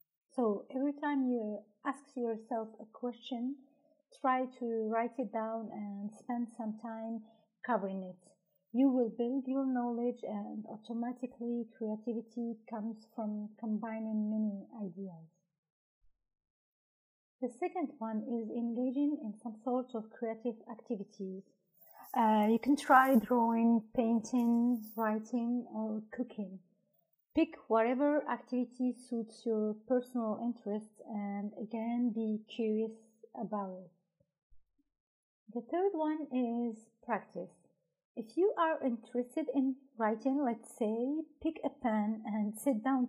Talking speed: 115 wpm